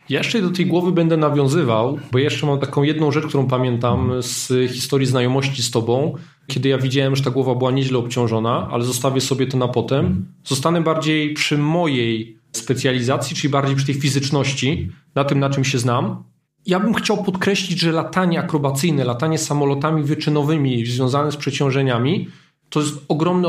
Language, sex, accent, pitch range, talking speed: Polish, male, native, 135-160 Hz, 175 wpm